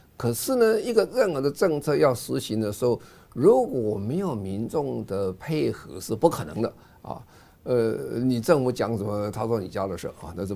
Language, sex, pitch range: Chinese, male, 95-125 Hz